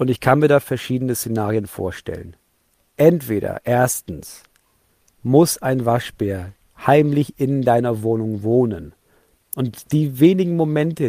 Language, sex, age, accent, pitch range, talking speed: German, male, 40-59, German, 115-155 Hz, 120 wpm